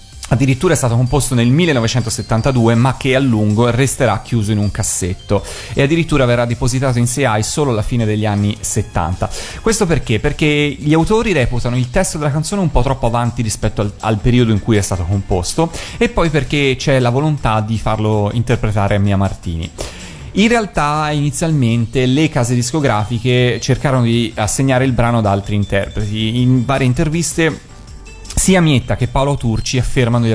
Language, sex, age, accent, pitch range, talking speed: Italian, male, 30-49, native, 105-130 Hz, 170 wpm